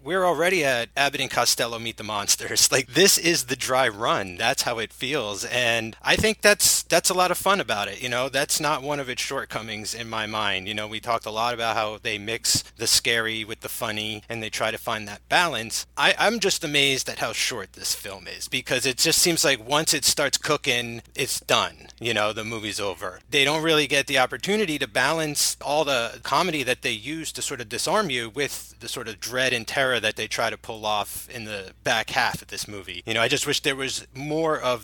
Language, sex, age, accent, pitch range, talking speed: English, male, 30-49, American, 115-155 Hz, 235 wpm